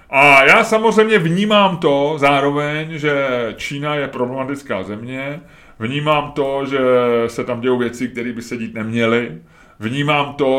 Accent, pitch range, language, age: native, 105-125 Hz, Czech, 30-49